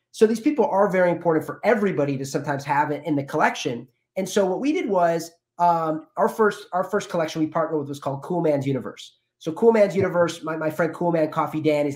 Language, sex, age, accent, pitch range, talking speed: Italian, male, 30-49, American, 145-175 Hz, 235 wpm